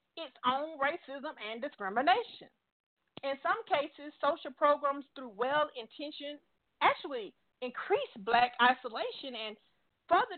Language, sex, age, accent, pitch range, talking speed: English, female, 40-59, American, 225-310 Hz, 105 wpm